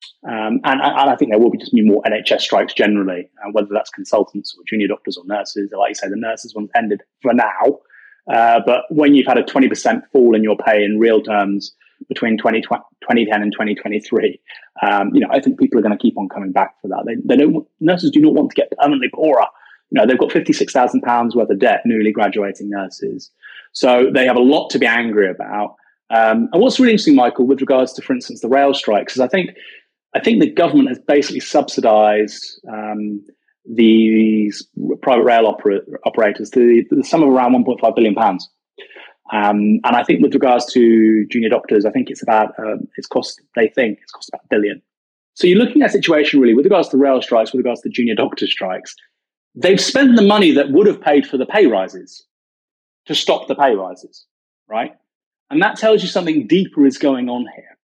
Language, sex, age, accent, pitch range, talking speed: English, male, 20-39, British, 110-150 Hz, 210 wpm